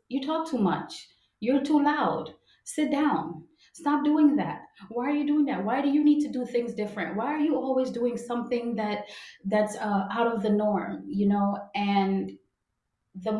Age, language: 30-49, English